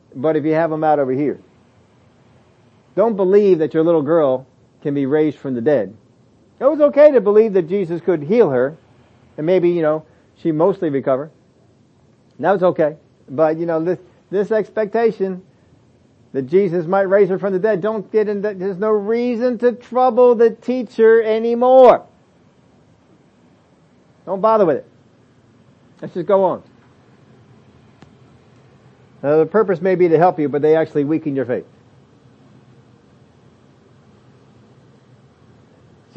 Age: 50-69